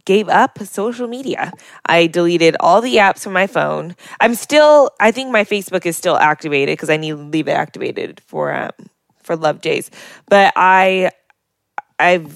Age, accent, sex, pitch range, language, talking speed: 10-29, American, female, 170-215 Hz, English, 175 wpm